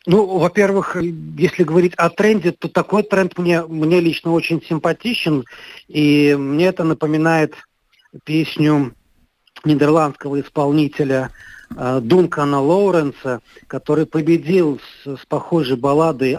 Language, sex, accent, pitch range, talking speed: Russian, male, native, 135-165 Hz, 110 wpm